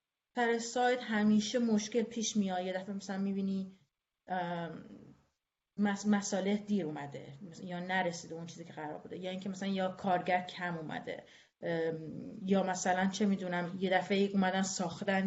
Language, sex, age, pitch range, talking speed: Persian, female, 30-49, 185-220 Hz, 145 wpm